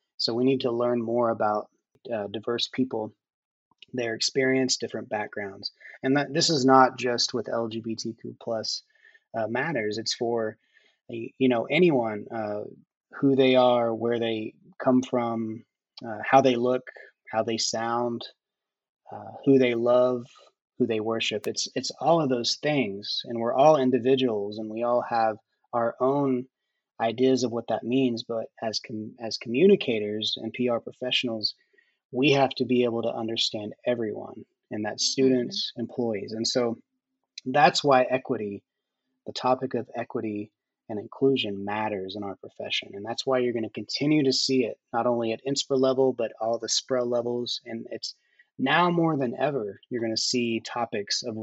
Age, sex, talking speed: 30-49, male, 165 wpm